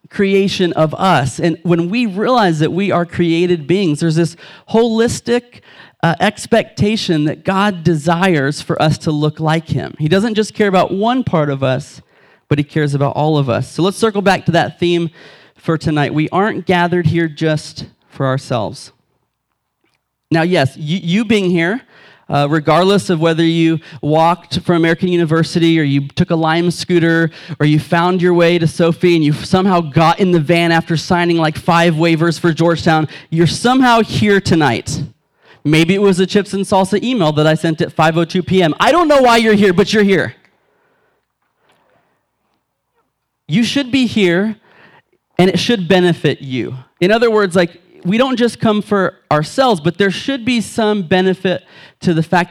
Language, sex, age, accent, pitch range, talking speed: English, male, 30-49, American, 155-195 Hz, 175 wpm